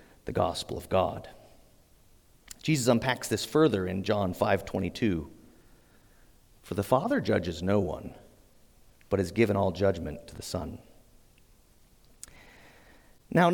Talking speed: 120 wpm